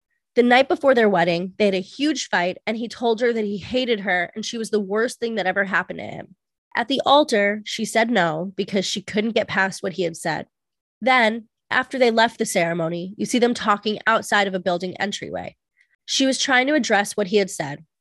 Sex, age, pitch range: female, 20-39, 195-240 Hz